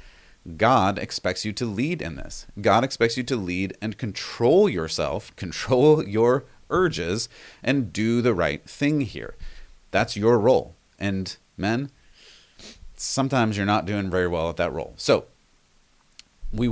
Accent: American